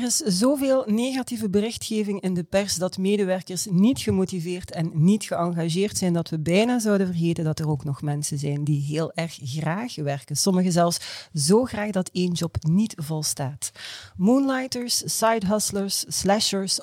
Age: 40-59